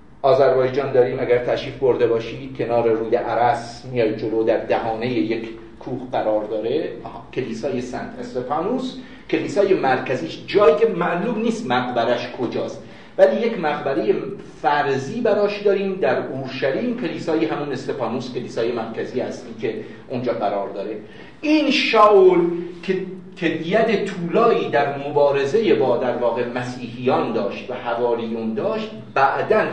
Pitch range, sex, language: 130-210 Hz, male, Persian